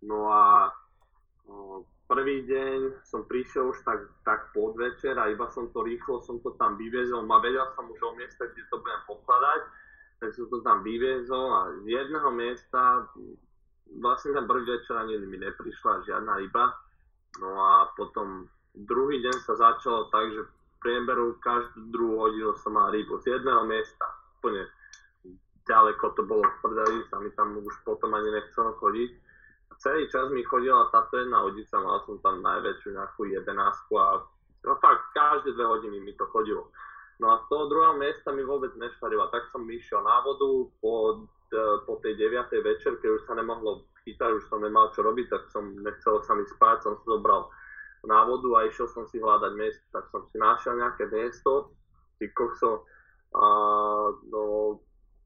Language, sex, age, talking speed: Slovak, male, 20-39, 170 wpm